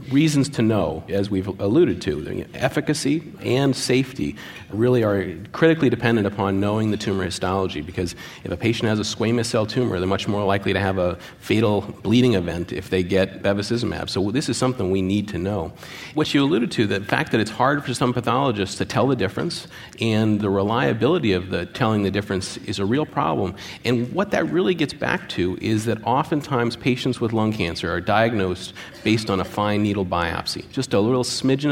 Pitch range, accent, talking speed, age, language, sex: 95-125 Hz, American, 200 wpm, 40-59, English, male